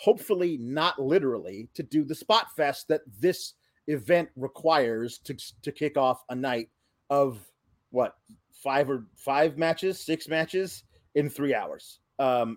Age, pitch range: 30-49, 130-190 Hz